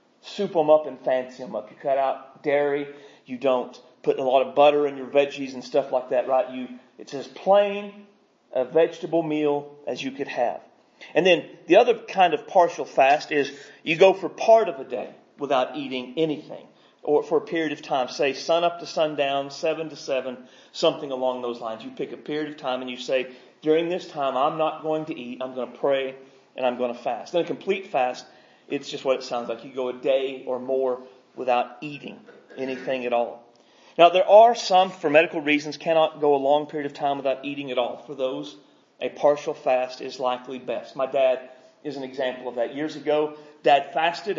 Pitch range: 130-160 Hz